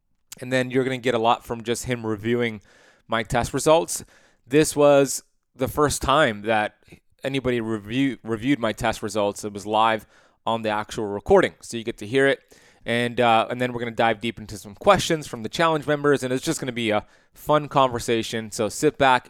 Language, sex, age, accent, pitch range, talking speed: English, male, 20-39, American, 110-135 Hz, 200 wpm